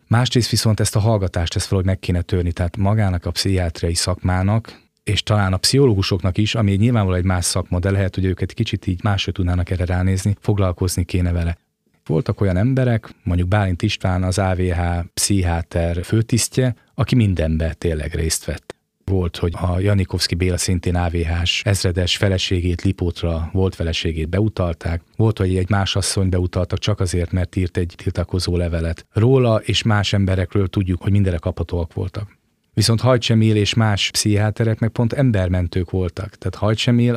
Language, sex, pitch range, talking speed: Hungarian, male, 90-110 Hz, 160 wpm